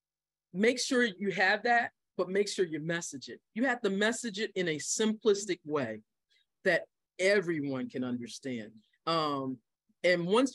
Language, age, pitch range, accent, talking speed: English, 40-59, 150-200 Hz, American, 155 wpm